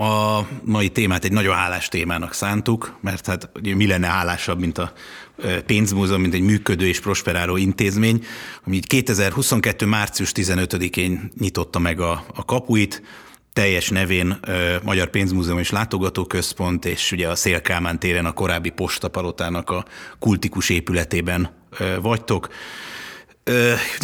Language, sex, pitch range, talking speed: Hungarian, male, 90-110 Hz, 125 wpm